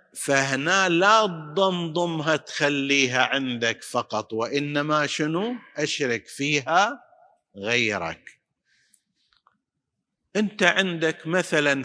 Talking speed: 70 wpm